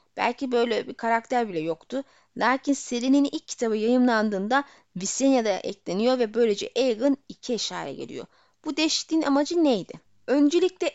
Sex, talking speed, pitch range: female, 130 wpm, 215-275 Hz